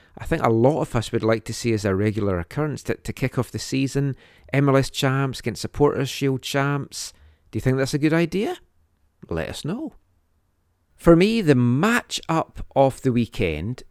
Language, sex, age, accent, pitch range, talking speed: English, male, 40-59, British, 105-135 Hz, 185 wpm